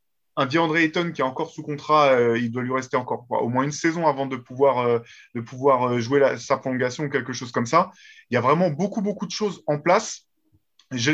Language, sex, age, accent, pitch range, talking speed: French, male, 20-39, French, 135-180 Hz, 250 wpm